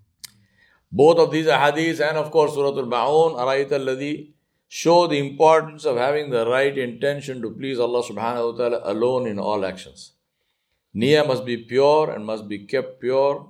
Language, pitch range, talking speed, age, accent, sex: English, 110-150 Hz, 175 wpm, 60-79, Indian, male